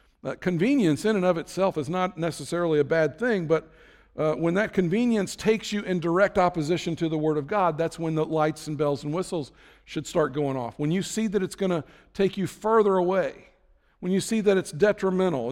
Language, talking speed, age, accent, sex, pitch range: English, 215 wpm, 50-69, American, male, 150-185 Hz